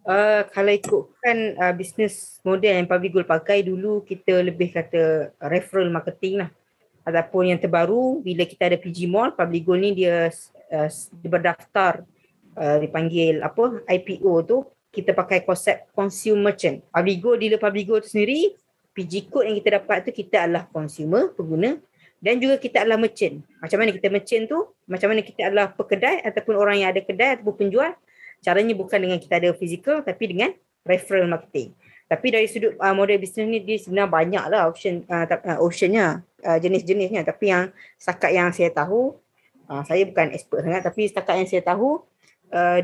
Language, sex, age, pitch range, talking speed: Malay, female, 20-39, 175-210 Hz, 165 wpm